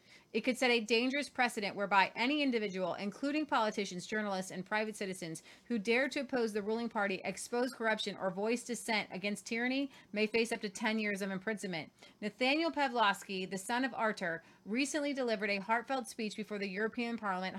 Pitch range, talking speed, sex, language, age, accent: 200-250 Hz, 175 wpm, female, English, 30-49, American